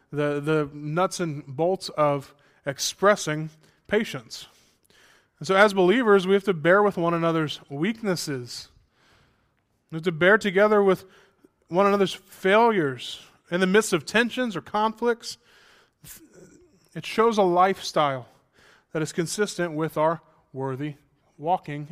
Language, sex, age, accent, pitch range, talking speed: English, male, 20-39, American, 145-190 Hz, 130 wpm